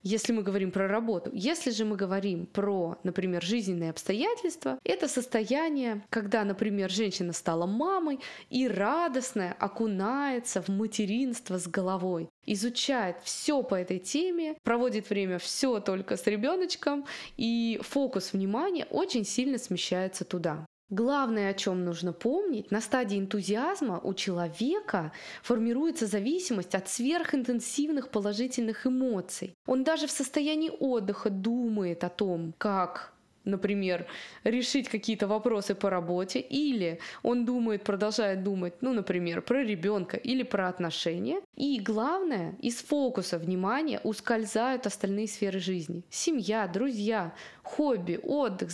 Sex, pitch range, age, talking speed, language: female, 190-255 Hz, 20-39, 125 wpm, Russian